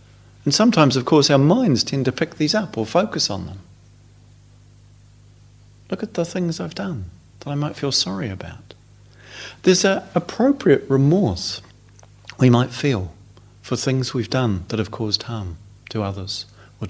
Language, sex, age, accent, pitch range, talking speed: English, male, 40-59, British, 105-140 Hz, 160 wpm